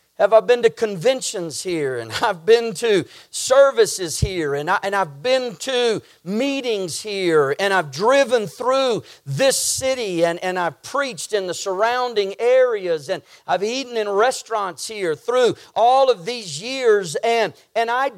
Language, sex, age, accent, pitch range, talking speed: English, male, 40-59, American, 185-265 Hz, 160 wpm